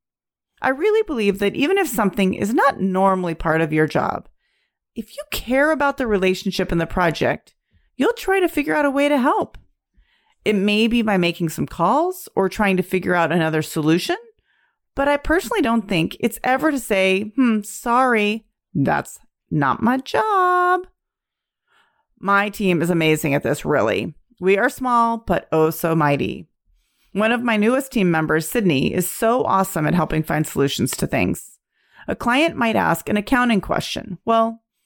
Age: 30-49